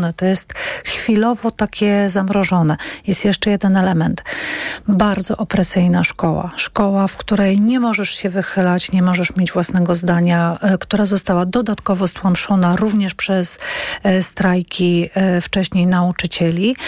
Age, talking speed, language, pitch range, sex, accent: 40-59, 115 wpm, Polish, 180-220 Hz, female, native